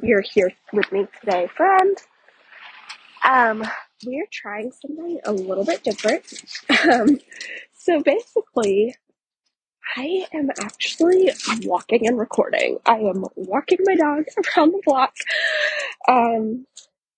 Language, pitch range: English, 220-310 Hz